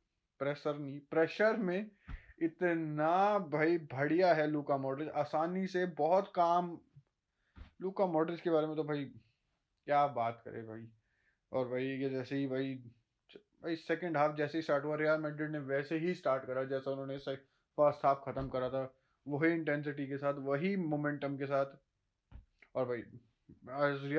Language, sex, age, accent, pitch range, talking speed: Hindi, male, 20-39, native, 140-170 Hz, 155 wpm